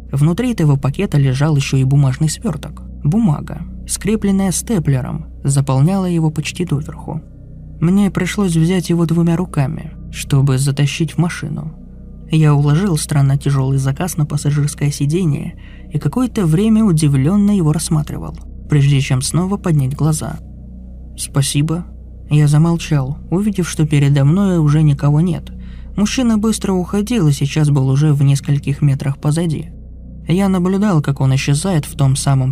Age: 20-39